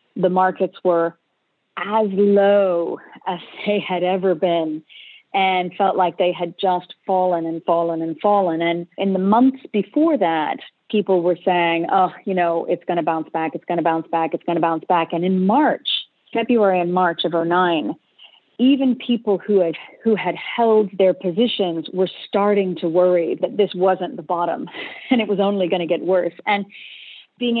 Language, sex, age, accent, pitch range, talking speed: English, female, 40-59, American, 175-200 Hz, 185 wpm